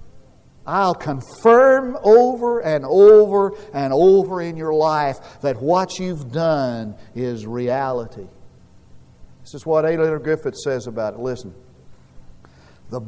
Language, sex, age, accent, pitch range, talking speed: English, male, 50-69, American, 145-225 Hz, 125 wpm